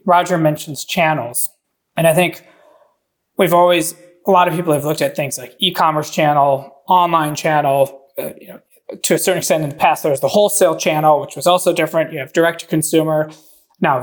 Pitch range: 150-175 Hz